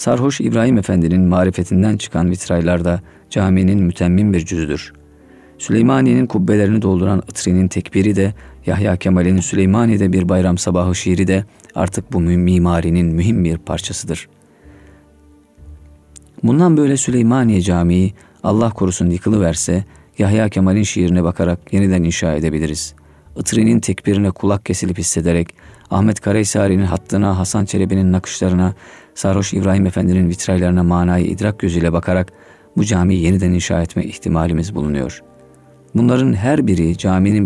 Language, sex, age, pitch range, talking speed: Turkish, male, 40-59, 85-100 Hz, 120 wpm